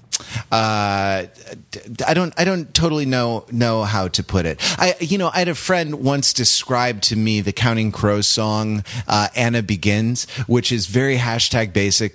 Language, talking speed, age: English, 175 wpm, 30-49